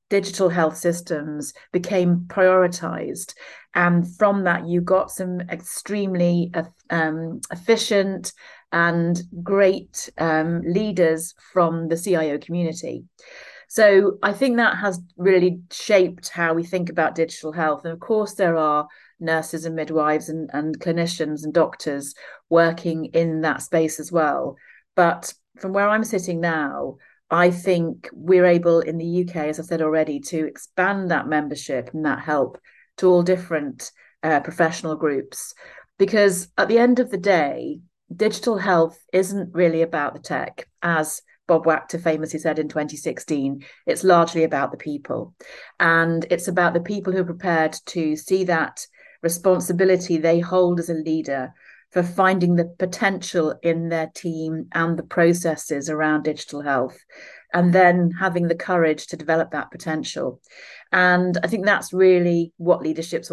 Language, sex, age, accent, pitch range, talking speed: English, female, 40-59, British, 160-185 Hz, 150 wpm